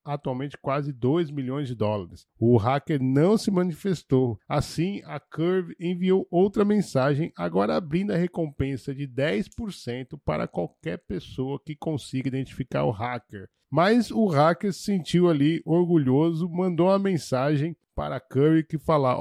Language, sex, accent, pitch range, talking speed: Portuguese, male, Brazilian, 135-180 Hz, 145 wpm